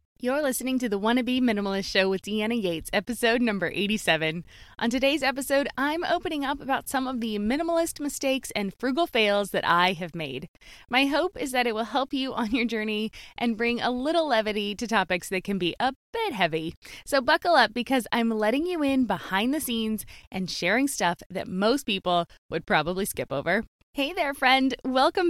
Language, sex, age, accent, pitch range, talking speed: English, female, 20-39, American, 200-265 Hz, 190 wpm